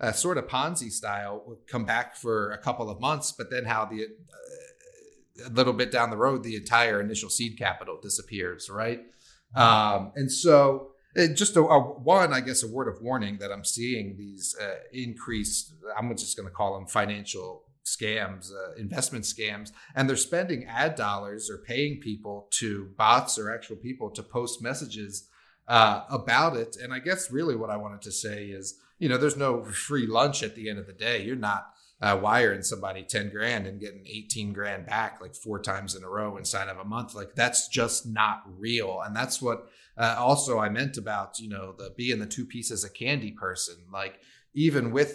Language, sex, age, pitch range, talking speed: English, male, 30-49, 105-125 Hz, 200 wpm